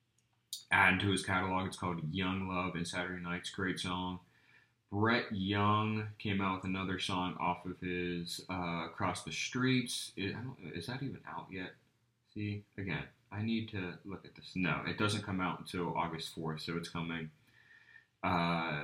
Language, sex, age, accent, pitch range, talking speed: English, male, 20-39, American, 85-100 Hz, 165 wpm